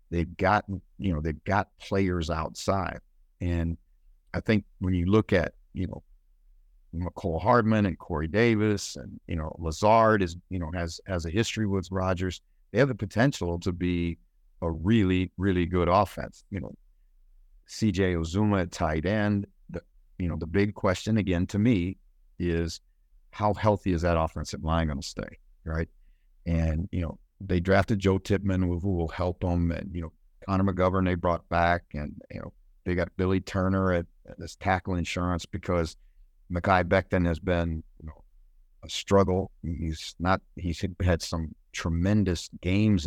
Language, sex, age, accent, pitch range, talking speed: English, male, 50-69, American, 85-100 Hz, 165 wpm